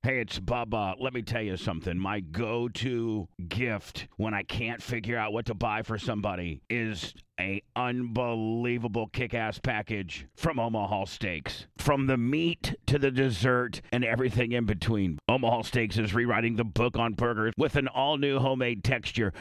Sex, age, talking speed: male, 40-59, 160 wpm